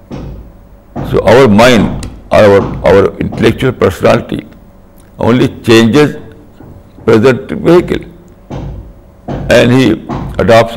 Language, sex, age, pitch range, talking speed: Urdu, male, 60-79, 95-115 Hz, 80 wpm